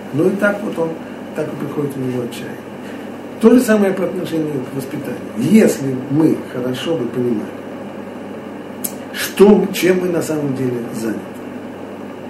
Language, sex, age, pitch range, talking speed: Russian, male, 60-79, 140-235 Hz, 145 wpm